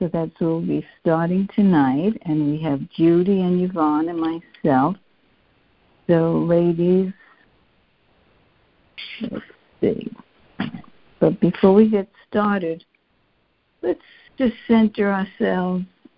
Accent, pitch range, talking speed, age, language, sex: American, 155-200 Hz, 105 wpm, 60-79, English, female